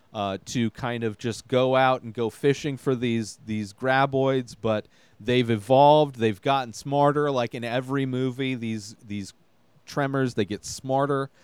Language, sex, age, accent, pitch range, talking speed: English, male, 30-49, American, 105-135 Hz, 155 wpm